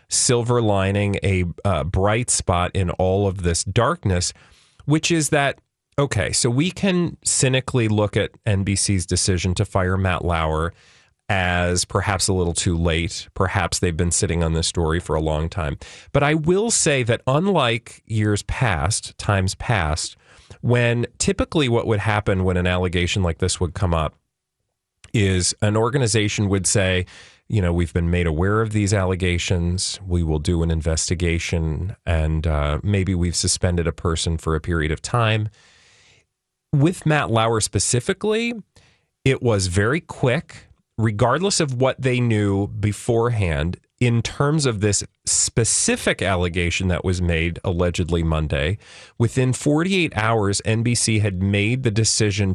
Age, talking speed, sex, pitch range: 40-59, 150 wpm, male, 90-120 Hz